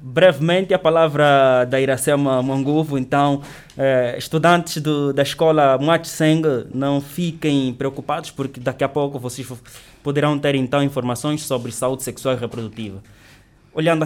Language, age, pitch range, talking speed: Portuguese, 20-39, 125-150 Hz, 130 wpm